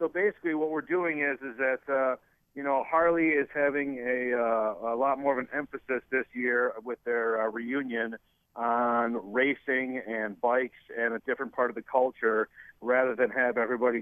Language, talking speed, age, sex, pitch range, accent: English, 185 wpm, 50-69, male, 115-135 Hz, American